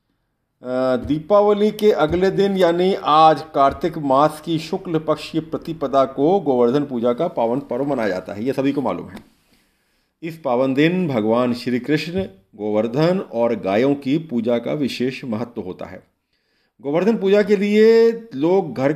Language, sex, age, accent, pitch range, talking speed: Hindi, male, 40-59, native, 120-175 Hz, 150 wpm